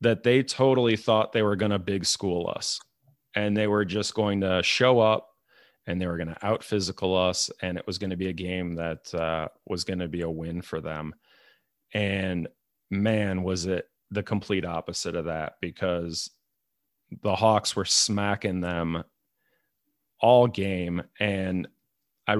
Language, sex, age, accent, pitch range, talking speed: English, male, 30-49, American, 90-110 Hz, 170 wpm